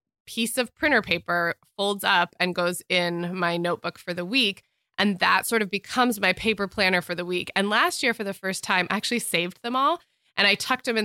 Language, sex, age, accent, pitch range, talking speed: English, female, 20-39, American, 175-230 Hz, 230 wpm